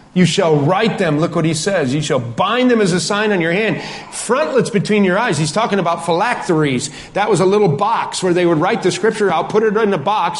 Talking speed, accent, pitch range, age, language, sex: 250 wpm, American, 155-210 Hz, 40-59, English, male